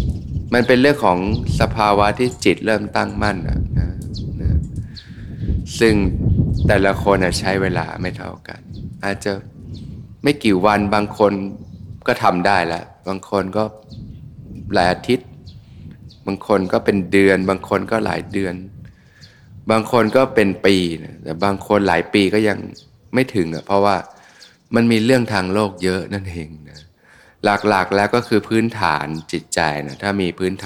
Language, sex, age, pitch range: Thai, male, 20-39, 90-110 Hz